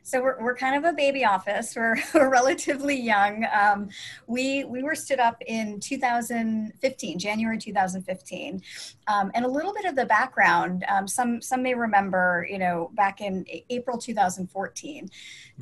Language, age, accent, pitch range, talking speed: English, 30-49, American, 195-250 Hz, 160 wpm